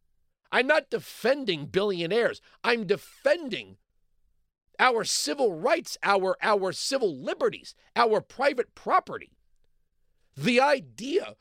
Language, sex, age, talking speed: English, male, 40-59, 95 wpm